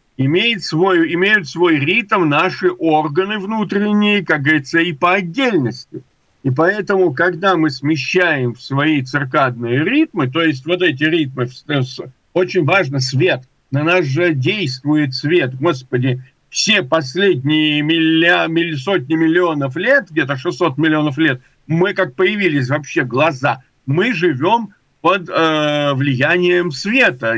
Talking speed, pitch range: 120 wpm, 145-195 Hz